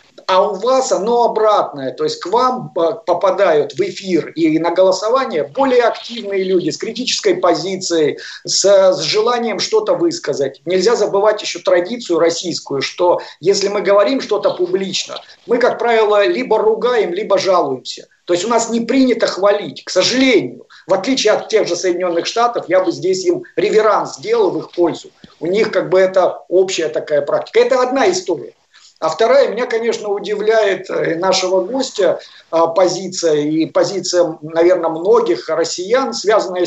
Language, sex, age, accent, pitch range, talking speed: Russian, male, 50-69, native, 180-255 Hz, 150 wpm